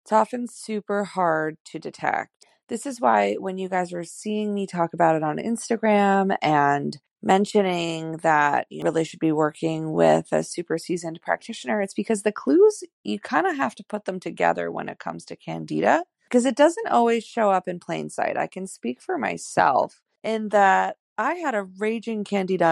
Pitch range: 160-220 Hz